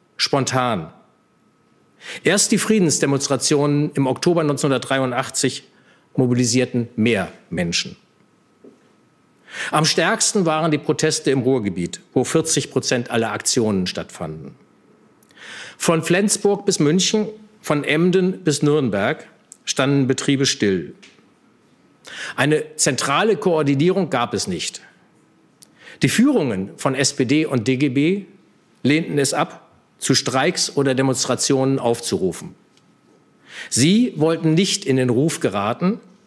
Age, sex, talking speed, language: 50-69, male, 100 wpm, German